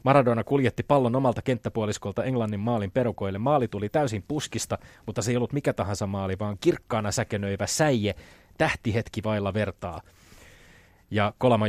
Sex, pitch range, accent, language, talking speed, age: male, 95-115 Hz, native, Finnish, 145 wpm, 30-49